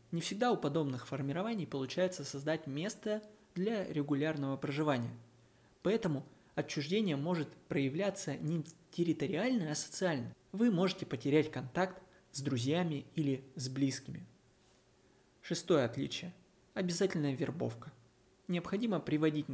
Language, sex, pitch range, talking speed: Russian, male, 135-180 Hz, 105 wpm